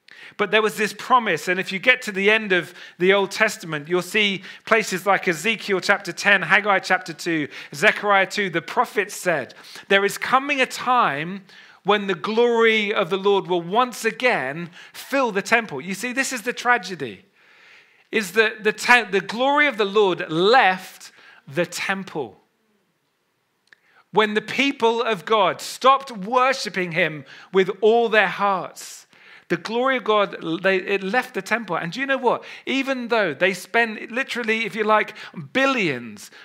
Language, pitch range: English, 180-230 Hz